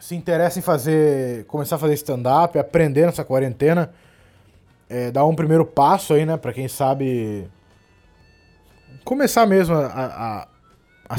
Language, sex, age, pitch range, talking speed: Portuguese, male, 20-39, 140-195 Hz, 130 wpm